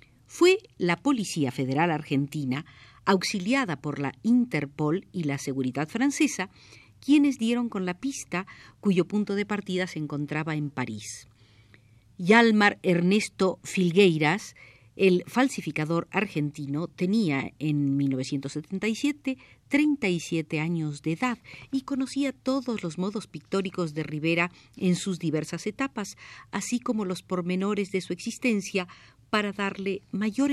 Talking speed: 120 wpm